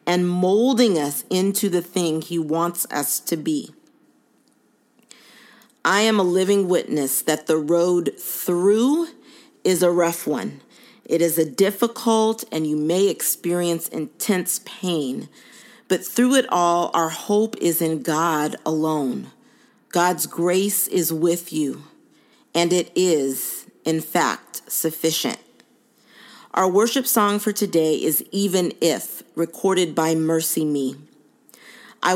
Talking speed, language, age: 125 wpm, English, 40-59